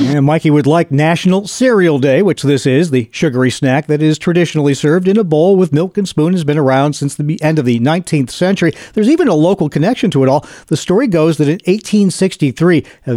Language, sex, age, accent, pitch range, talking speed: English, male, 50-69, American, 140-195 Hz, 225 wpm